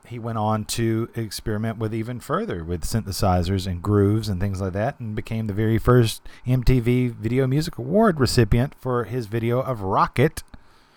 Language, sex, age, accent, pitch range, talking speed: English, male, 40-59, American, 95-125 Hz, 170 wpm